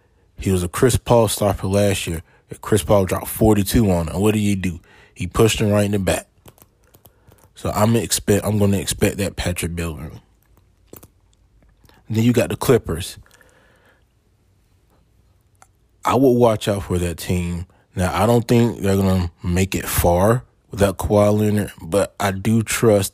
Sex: male